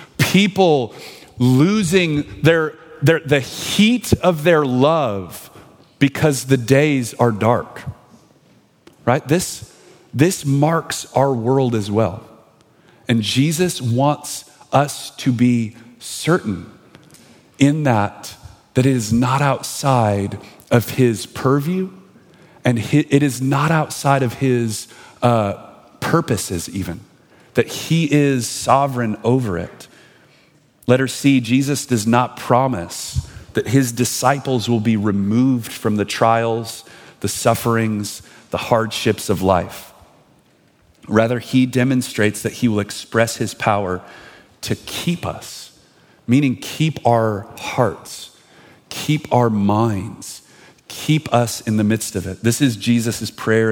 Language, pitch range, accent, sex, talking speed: English, 110-140 Hz, American, male, 120 wpm